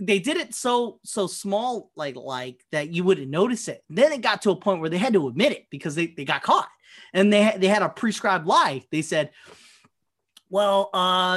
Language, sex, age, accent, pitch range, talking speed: English, male, 30-49, American, 170-230 Hz, 220 wpm